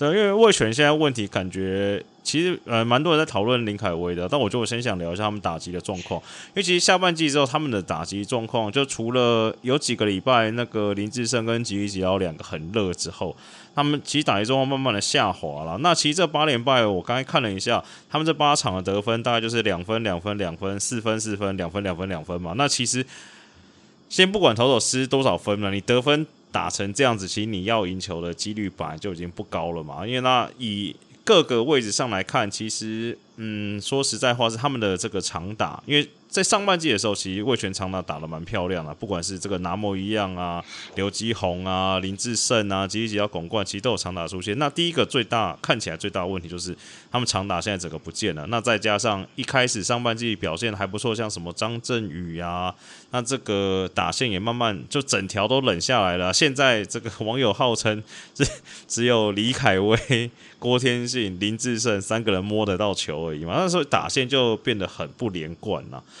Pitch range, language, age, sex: 95-125 Hz, Chinese, 20-39, male